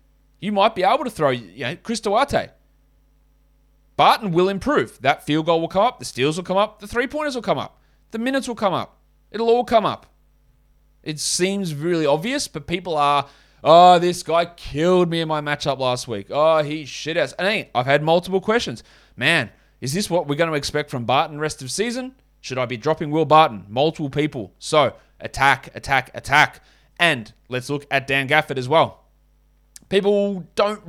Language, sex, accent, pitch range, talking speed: English, male, Australian, 135-180 Hz, 195 wpm